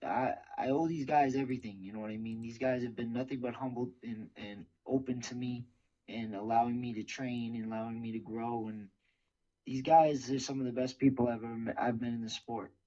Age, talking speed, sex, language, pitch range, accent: 20-39, 235 wpm, male, English, 115-130 Hz, American